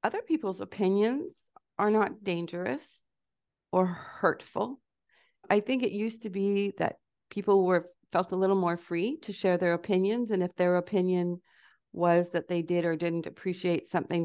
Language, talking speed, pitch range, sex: English, 160 wpm, 170-215 Hz, female